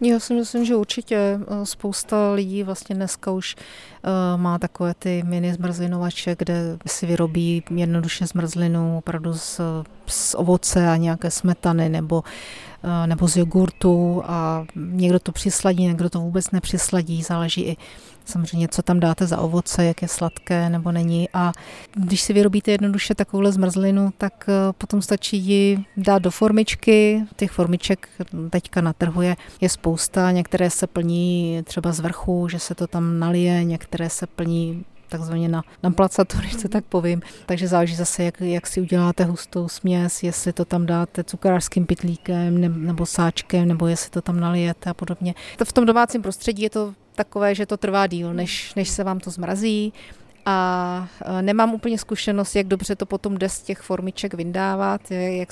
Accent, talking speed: native, 160 wpm